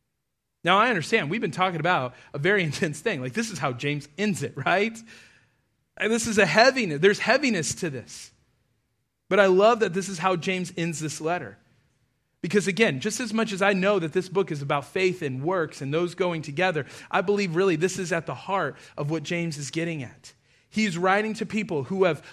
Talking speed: 210 wpm